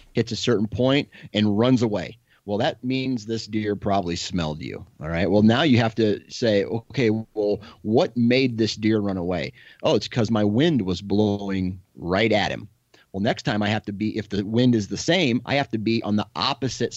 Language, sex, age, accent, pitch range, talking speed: English, male, 30-49, American, 100-120 Hz, 215 wpm